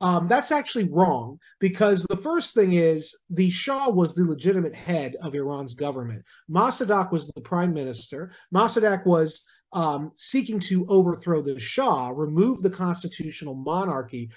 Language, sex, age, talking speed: English, male, 40-59, 145 wpm